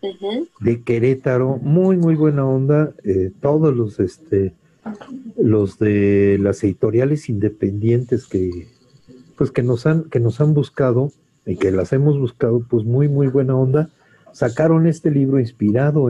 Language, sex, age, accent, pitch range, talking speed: Spanish, male, 50-69, Mexican, 115-150 Hz, 140 wpm